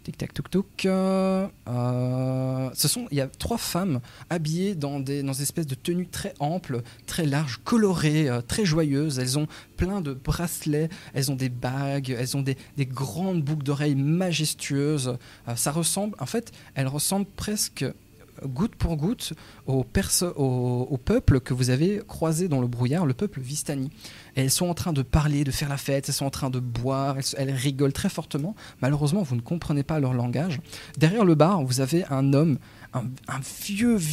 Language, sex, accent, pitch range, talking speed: French, male, French, 130-160 Hz, 190 wpm